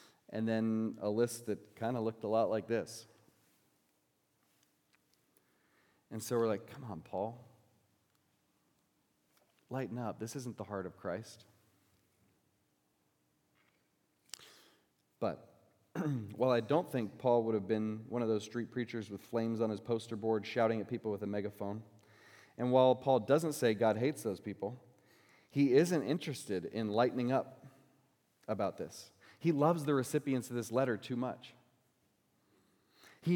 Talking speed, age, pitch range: 145 wpm, 30-49, 110-140 Hz